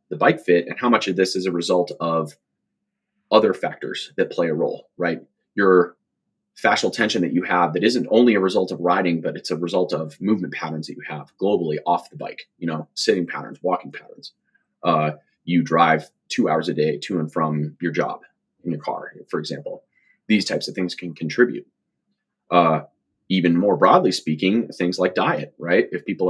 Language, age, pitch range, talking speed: English, 30-49, 85-105 Hz, 195 wpm